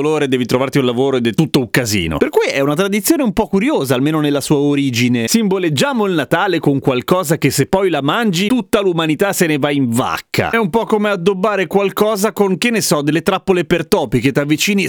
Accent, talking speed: native, 220 wpm